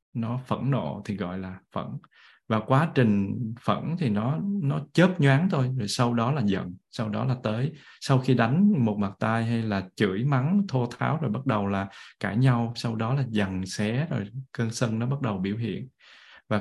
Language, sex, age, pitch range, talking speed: Vietnamese, male, 20-39, 105-130 Hz, 210 wpm